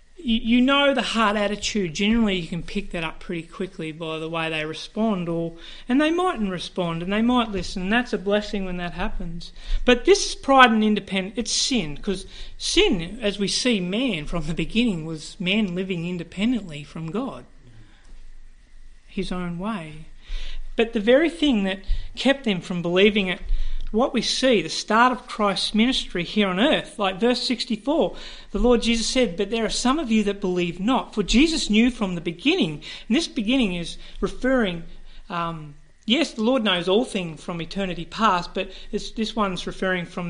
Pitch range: 175-230 Hz